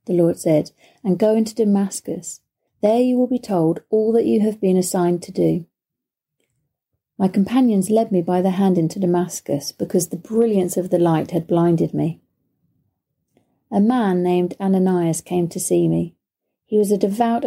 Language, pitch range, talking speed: English, 170-210 Hz, 170 wpm